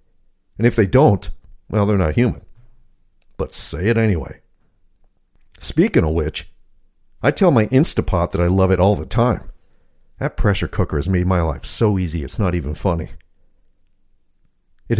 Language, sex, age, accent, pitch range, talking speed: English, male, 50-69, American, 85-105 Hz, 160 wpm